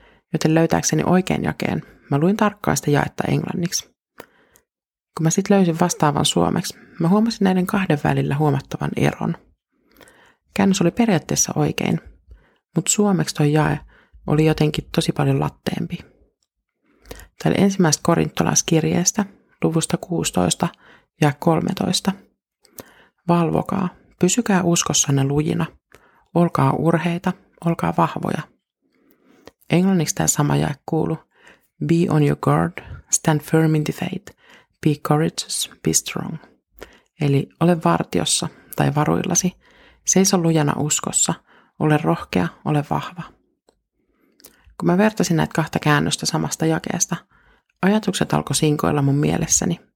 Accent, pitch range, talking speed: native, 150-185 Hz, 110 wpm